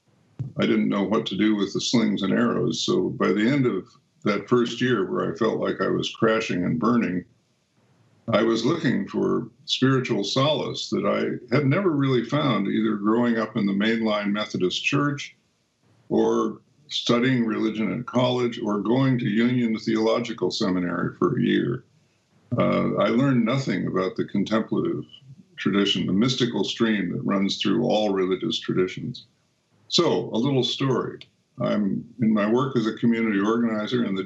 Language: English